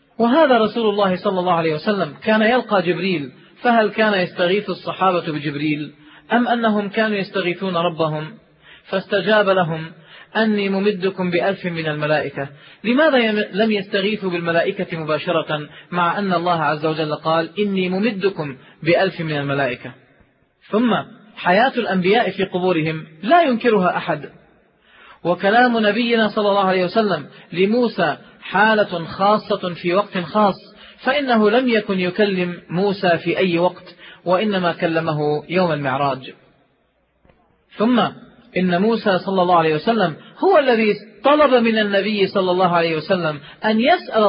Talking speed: 125 wpm